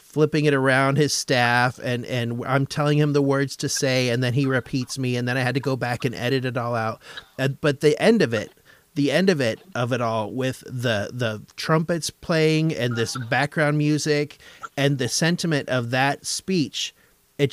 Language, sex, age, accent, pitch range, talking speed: English, male, 30-49, American, 125-150 Hz, 200 wpm